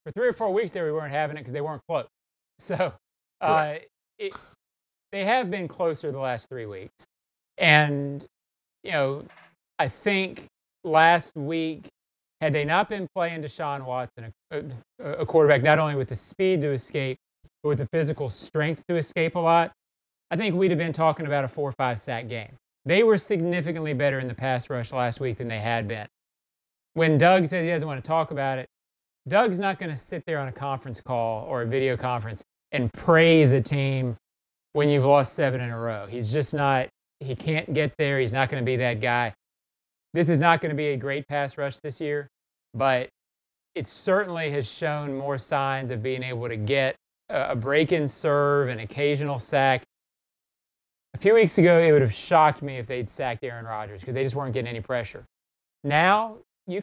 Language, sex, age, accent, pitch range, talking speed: English, male, 30-49, American, 125-160 Hz, 195 wpm